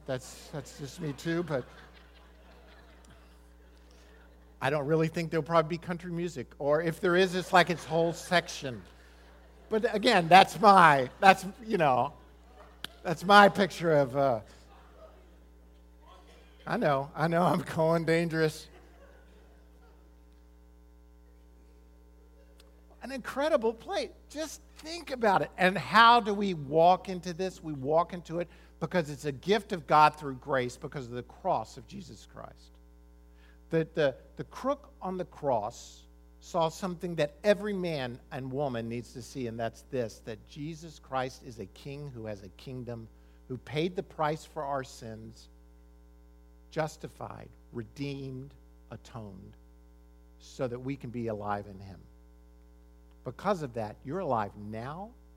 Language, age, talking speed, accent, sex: English, 50-69, 140 wpm, American, male